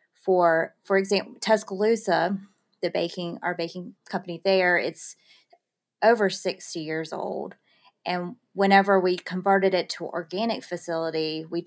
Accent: American